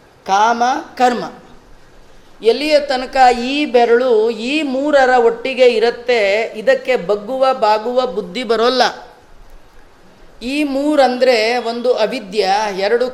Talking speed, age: 90 wpm, 30-49